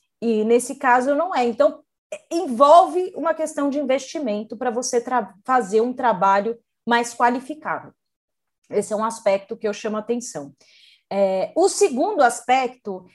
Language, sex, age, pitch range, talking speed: Portuguese, female, 30-49, 230-295 Hz, 135 wpm